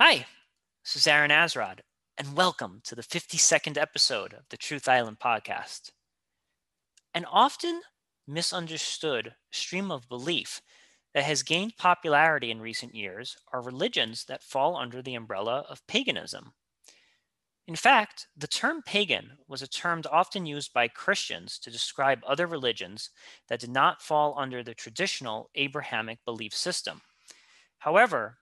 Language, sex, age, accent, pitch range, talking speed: English, male, 30-49, American, 130-170 Hz, 135 wpm